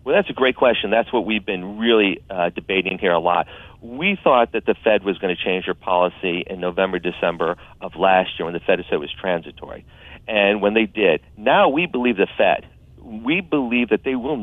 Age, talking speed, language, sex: 40-59, 220 wpm, English, male